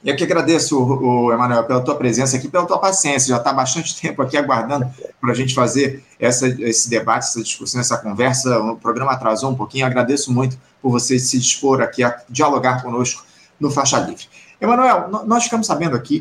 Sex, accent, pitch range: male, Brazilian, 130-175 Hz